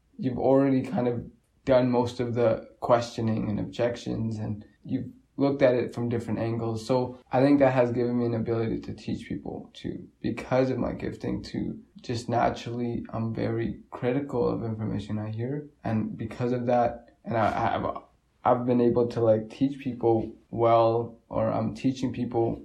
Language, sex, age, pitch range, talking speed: English, male, 20-39, 115-125 Hz, 170 wpm